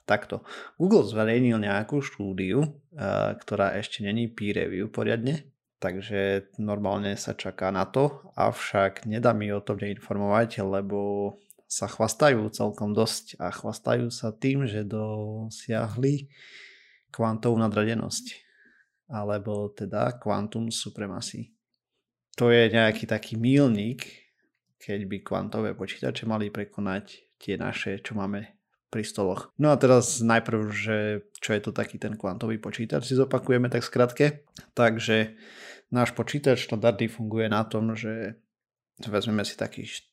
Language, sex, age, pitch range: Slovak, male, 20-39, 105-125 Hz